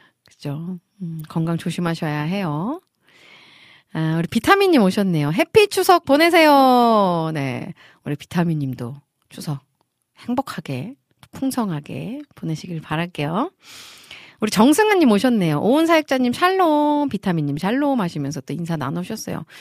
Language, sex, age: Korean, female, 40-59